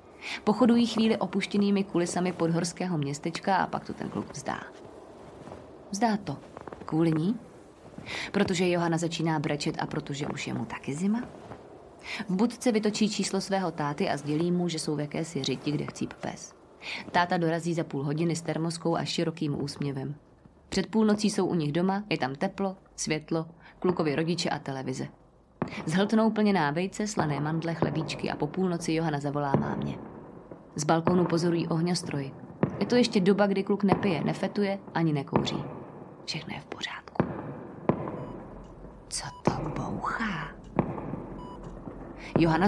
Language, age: Czech, 20-39